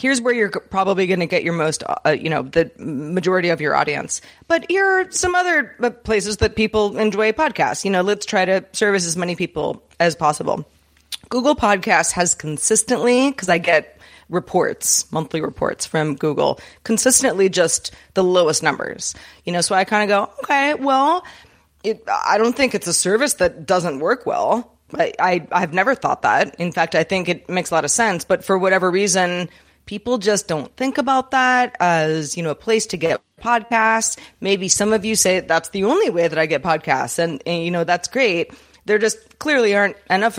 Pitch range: 175-250 Hz